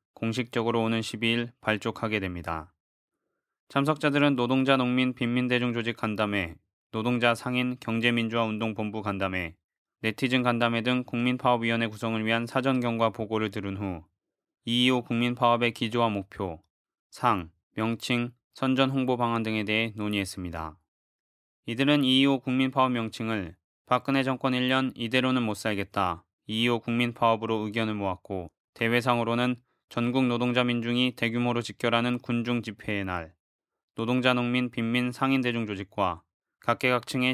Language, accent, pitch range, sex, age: Korean, native, 110-125 Hz, male, 20-39